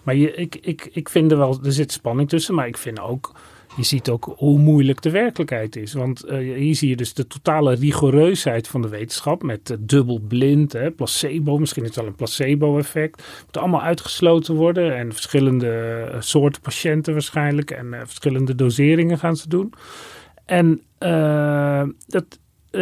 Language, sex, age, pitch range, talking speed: Dutch, male, 40-59, 135-170 Hz, 170 wpm